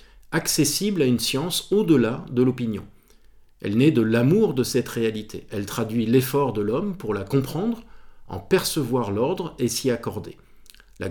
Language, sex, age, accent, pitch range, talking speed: French, male, 50-69, French, 115-150 Hz, 155 wpm